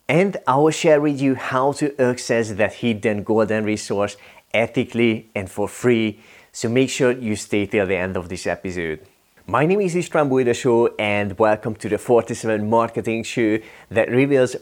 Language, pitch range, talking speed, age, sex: English, 105-125 Hz, 170 wpm, 30-49, male